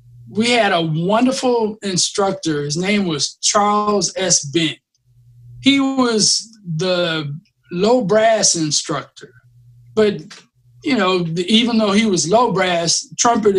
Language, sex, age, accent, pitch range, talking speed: English, male, 20-39, American, 155-215 Hz, 120 wpm